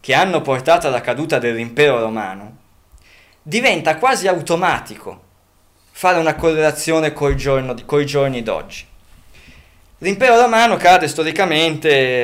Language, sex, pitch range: Italian, male, 110-155 Hz